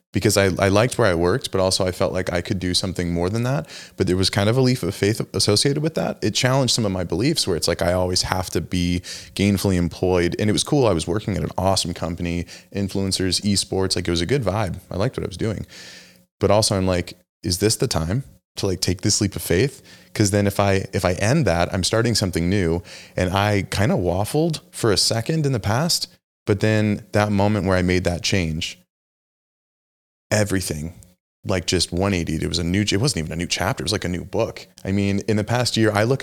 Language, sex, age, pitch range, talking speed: English, male, 20-39, 90-105 Hz, 245 wpm